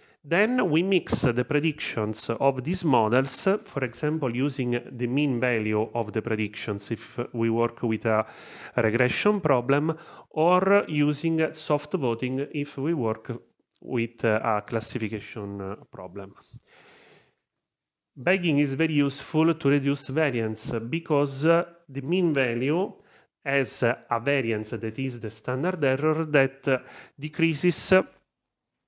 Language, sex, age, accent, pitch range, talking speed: English, male, 30-49, Italian, 115-145 Hz, 115 wpm